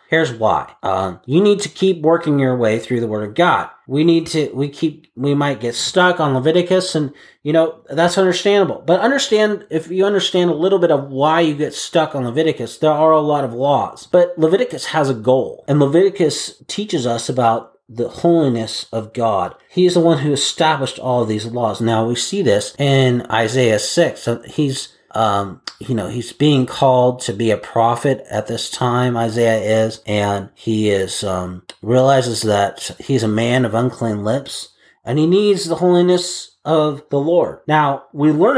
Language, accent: English, American